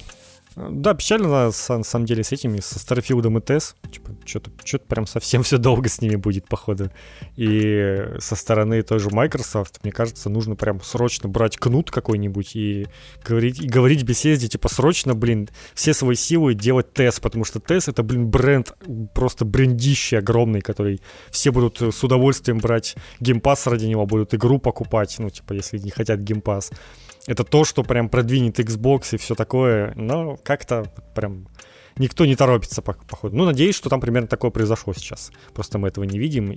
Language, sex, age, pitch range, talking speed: Ukrainian, male, 20-39, 105-135 Hz, 170 wpm